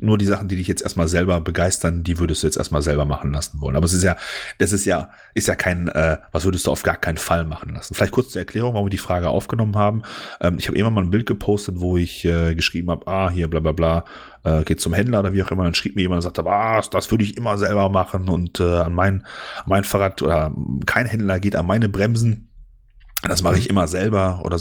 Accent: German